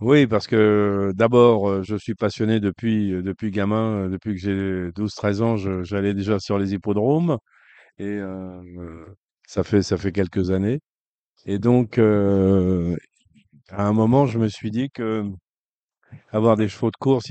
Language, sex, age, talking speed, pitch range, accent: French, male, 40-59, 155 wpm, 95-115 Hz, French